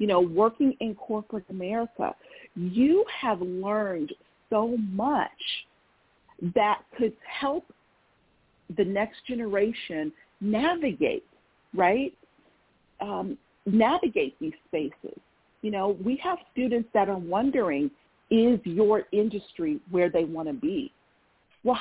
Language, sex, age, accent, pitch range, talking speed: English, female, 50-69, American, 195-270 Hz, 110 wpm